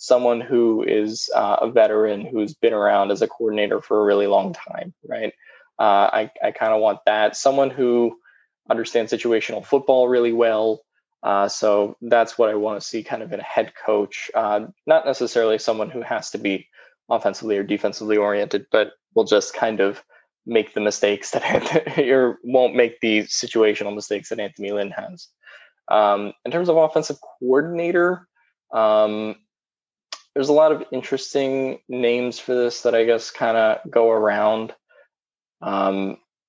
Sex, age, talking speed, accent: male, 10-29, 160 wpm, American